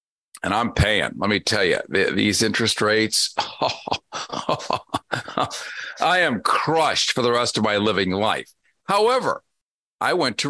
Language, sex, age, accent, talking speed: English, male, 50-69, American, 135 wpm